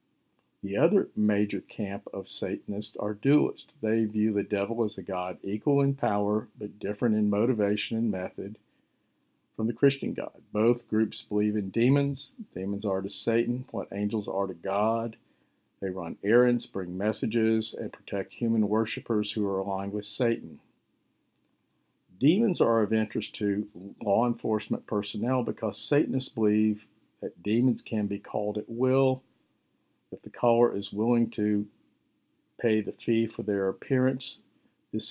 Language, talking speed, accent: English, 150 wpm, American